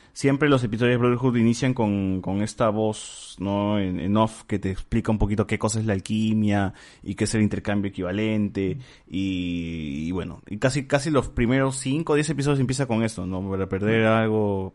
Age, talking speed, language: 20-39, 200 wpm, Spanish